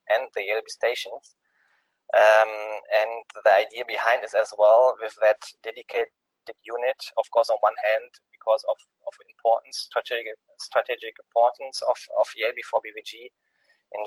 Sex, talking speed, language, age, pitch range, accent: male, 140 wpm, English, 20-39, 110-150 Hz, German